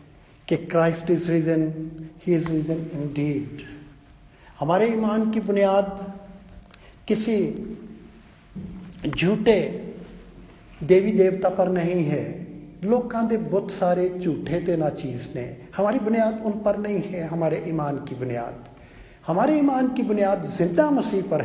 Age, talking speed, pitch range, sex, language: 50-69, 125 wpm, 150-205 Hz, male, Hindi